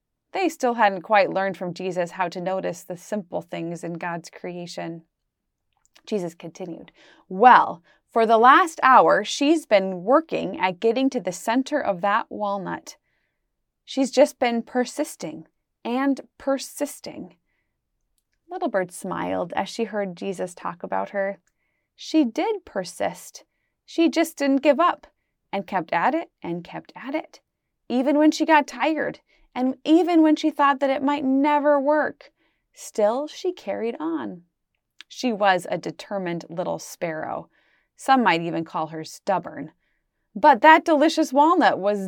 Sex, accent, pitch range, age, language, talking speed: female, American, 195-295 Hz, 20-39, English, 145 wpm